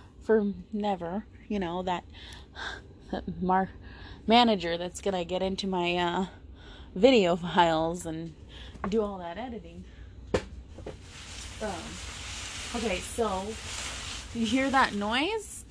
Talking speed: 105 wpm